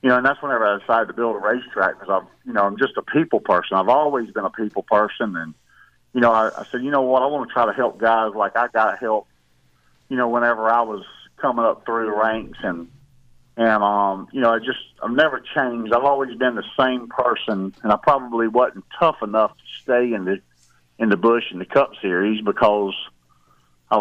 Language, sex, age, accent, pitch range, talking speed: English, male, 50-69, American, 100-130 Hz, 225 wpm